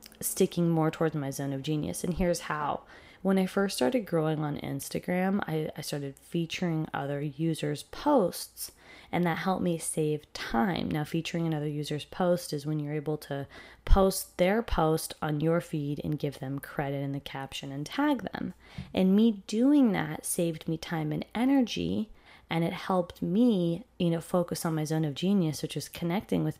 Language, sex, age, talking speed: English, female, 20-39, 185 wpm